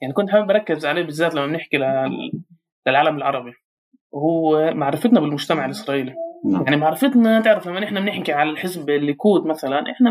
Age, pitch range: 20-39, 145-185 Hz